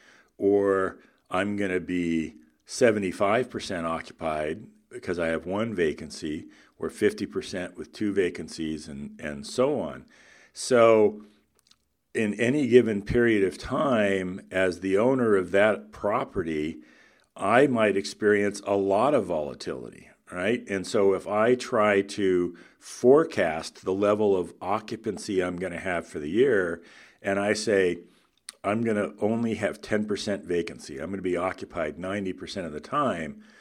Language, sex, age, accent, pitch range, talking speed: English, male, 50-69, American, 90-105 Hz, 140 wpm